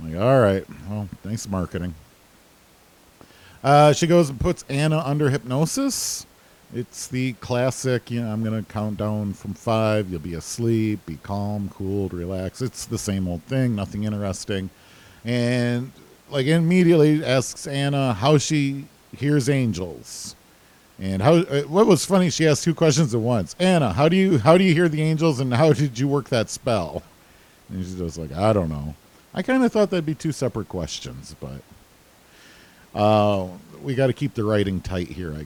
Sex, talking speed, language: male, 175 wpm, English